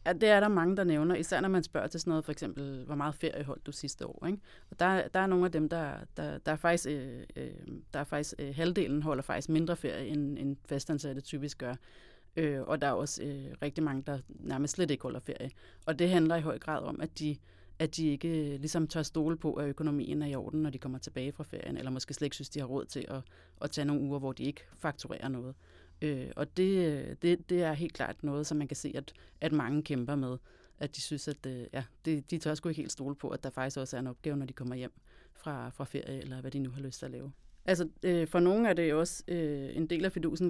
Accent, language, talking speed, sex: native, Danish, 260 wpm, female